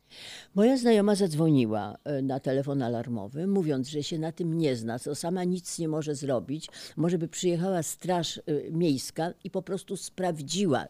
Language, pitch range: Polish, 135-185 Hz